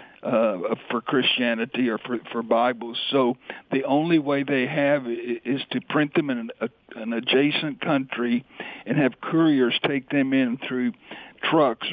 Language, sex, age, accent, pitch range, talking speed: English, male, 60-79, American, 120-140 Hz, 160 wpm